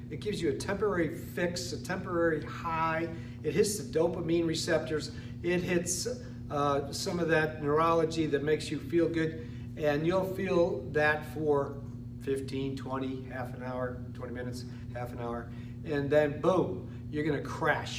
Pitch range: 120-170 Hz